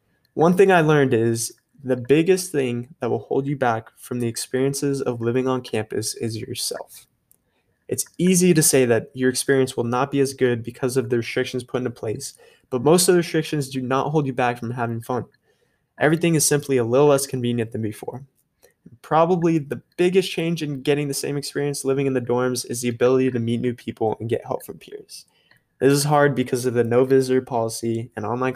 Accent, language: American, English